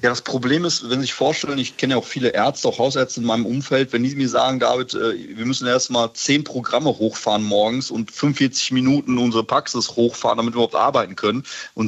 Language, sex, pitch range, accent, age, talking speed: German, male, 115-130 Hz, German, 30-49, 220 wpm